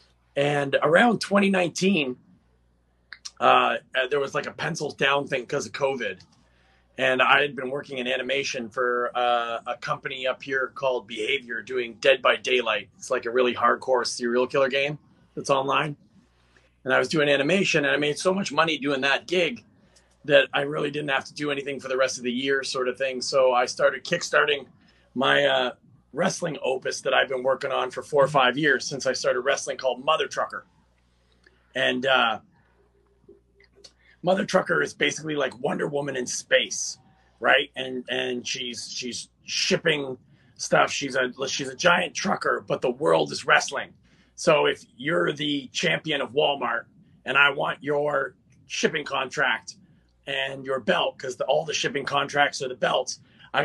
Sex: male